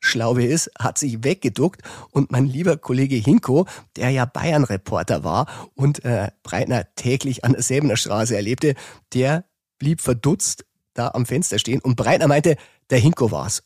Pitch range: 115-135 Hz